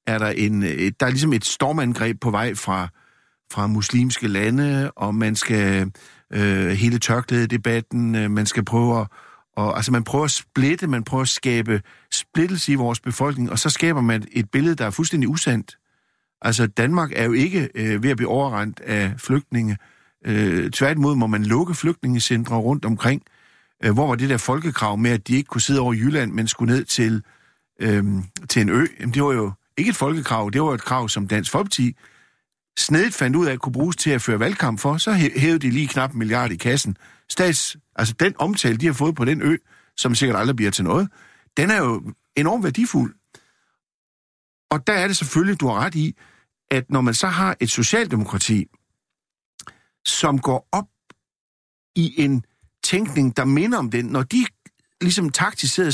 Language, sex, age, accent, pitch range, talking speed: Danish, male, 50-69, native, 110-150 Hz, 190 wpm